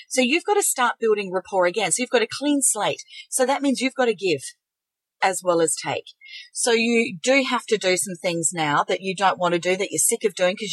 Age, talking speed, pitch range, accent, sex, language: 40-59, 255 wpm, 185-275 Hz, Australian, female, English